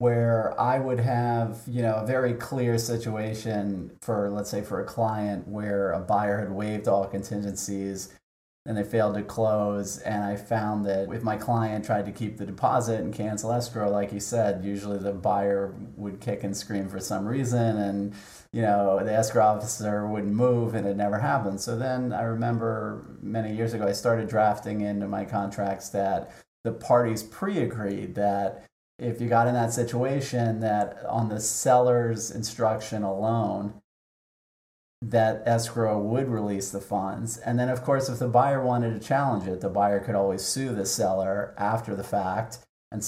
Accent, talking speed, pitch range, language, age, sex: American, 175 wpm, 100-115 Hz, English, 40-59, male